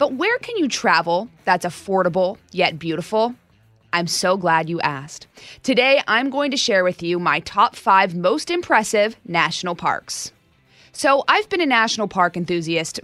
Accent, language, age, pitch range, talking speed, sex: American, English, 20-39, 175-235 Hz, 160 wpm, female